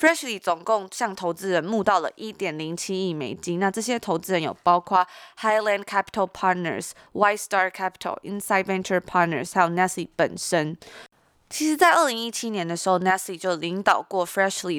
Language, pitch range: Chinese, 175-215 Hz